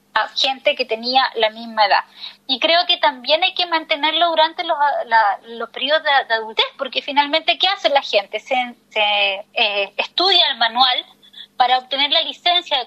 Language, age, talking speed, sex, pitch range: Spanish, 20-39, 180 wpm, female, 255-340 Hz